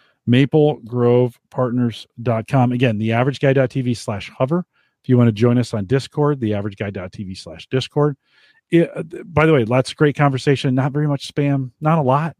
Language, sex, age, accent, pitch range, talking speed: English, male, 40-59, American, 110-150 Hz, 145 wpm